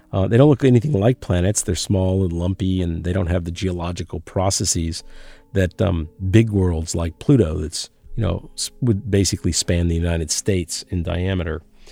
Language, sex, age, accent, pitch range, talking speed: English, male, 50-69, American, 85-105 Hz, 180 wpm